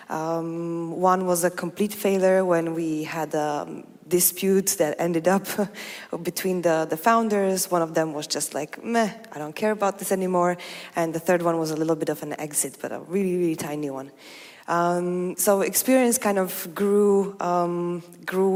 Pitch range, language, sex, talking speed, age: 165-185 Hz, English, female, 180 wpm, 20-39